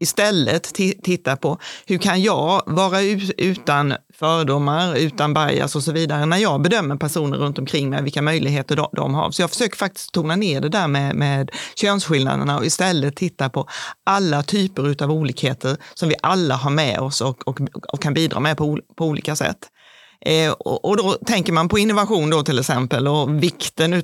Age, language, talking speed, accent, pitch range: 30-49, Swedish, 180 wpm, native, 140-170 Hz